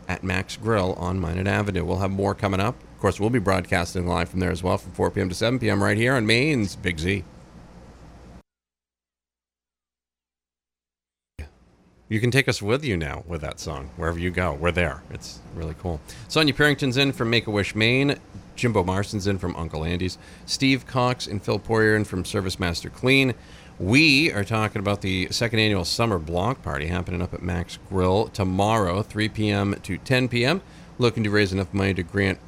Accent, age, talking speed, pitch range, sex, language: American, 40-59, 190 wpm, 85-110 Hz, male, English